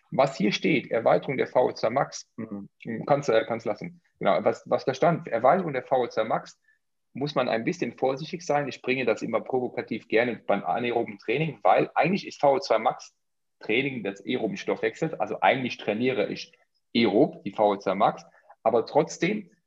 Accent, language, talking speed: German, German, 165 wpm